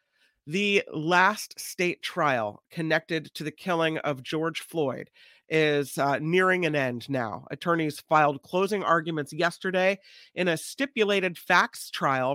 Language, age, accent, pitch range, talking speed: English, 40-59, American, 145-185 Hz, 130 wpm